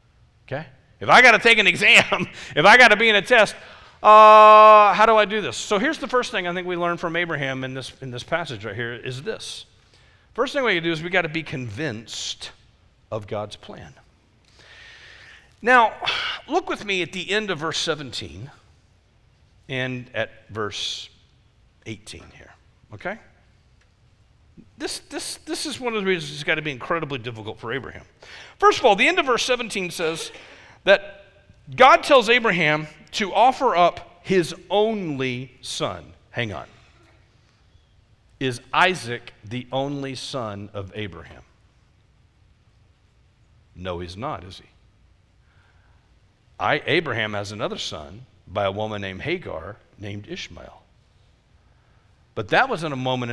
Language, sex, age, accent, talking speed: English, male, 40-59, American, 155 wpm